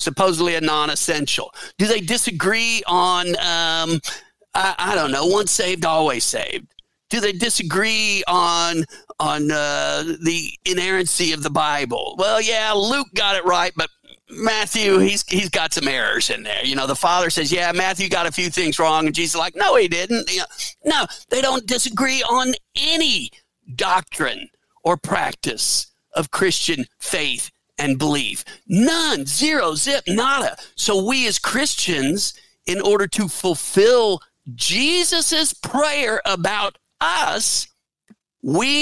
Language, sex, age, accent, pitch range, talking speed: English, male, 50-69, American, 155-220 Hz, 145 wpm